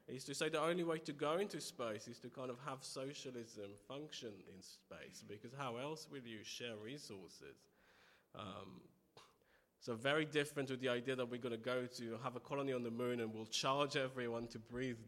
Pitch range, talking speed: 120-145 Hz, 205 wpm